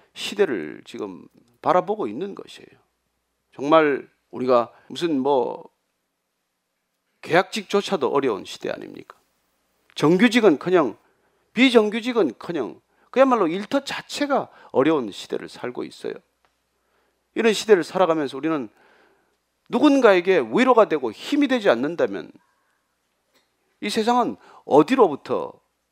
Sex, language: male, Korean